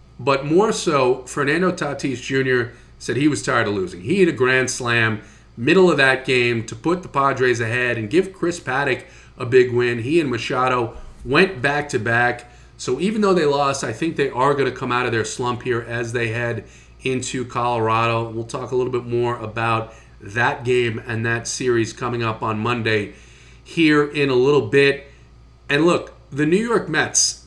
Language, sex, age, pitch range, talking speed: English, male, 40-59, 120-175 Hz, 190 wpm